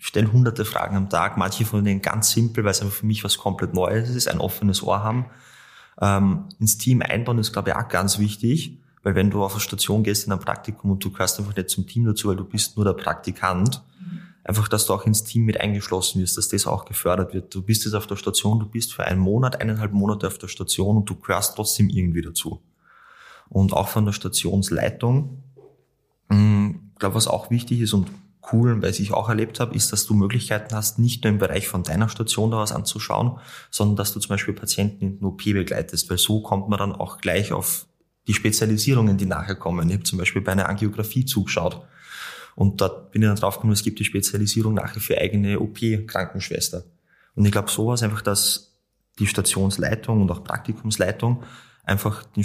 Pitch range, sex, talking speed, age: 95-110 Hz, male, 210 wpm, 20-39